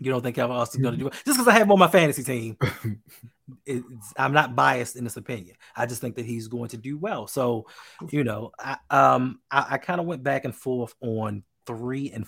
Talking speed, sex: 240 wpm, male